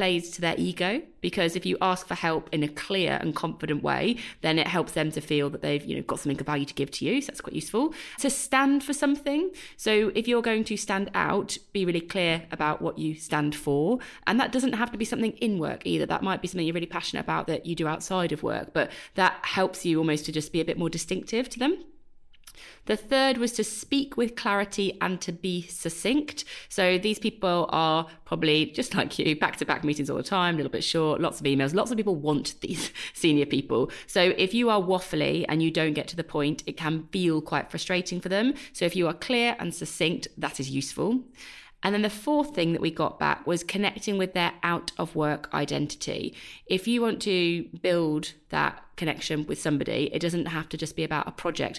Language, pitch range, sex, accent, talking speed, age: English, 155-220 Hz, female, British, 225 wpm, 30-49